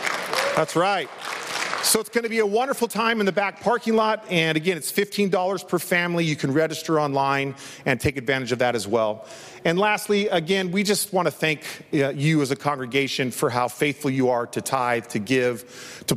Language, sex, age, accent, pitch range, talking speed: English, male, 40-59, American, 125-155 Hz, 200 wpm